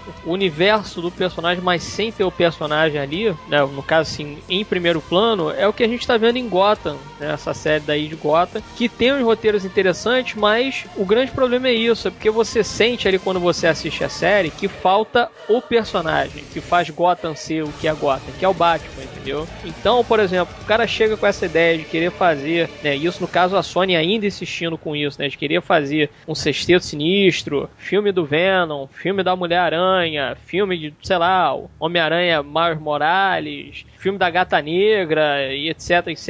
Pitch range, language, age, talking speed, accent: 165-235 Hz, Portuguese, 20-39, 195 wpm, Brazilian